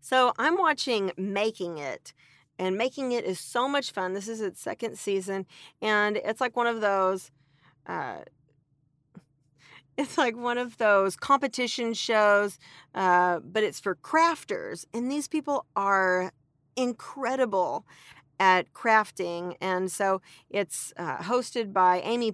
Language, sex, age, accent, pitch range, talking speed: English, female, 40-59, American, 175-225 Hz, 135 wpm